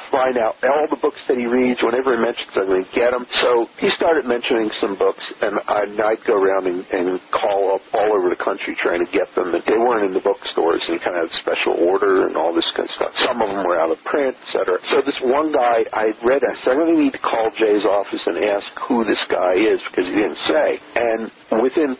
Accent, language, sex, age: American, English, male, 50-69